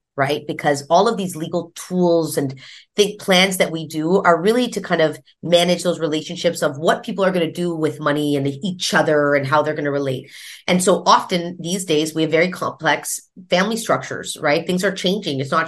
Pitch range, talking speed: 145-185 Hz, 215 wpm